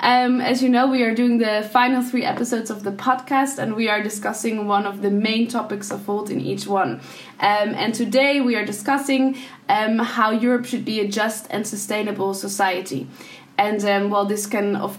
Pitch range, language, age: 200-245 Hz, Dutch, 10-29